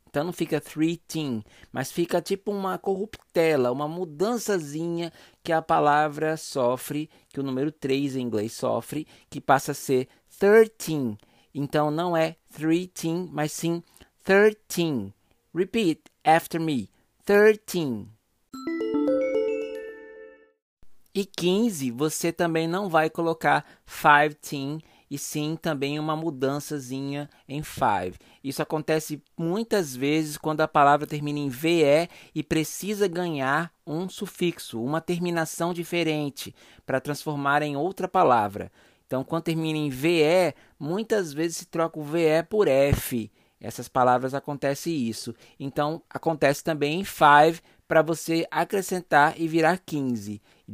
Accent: Brazilian